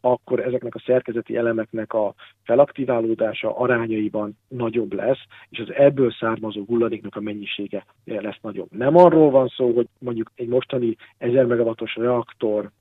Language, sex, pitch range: Hungarian, male, 105-125 Hz